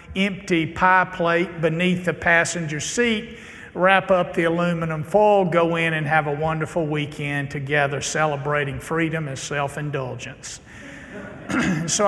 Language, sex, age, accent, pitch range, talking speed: English, male, 50-69, American, 155-180 Hz, 125 wpm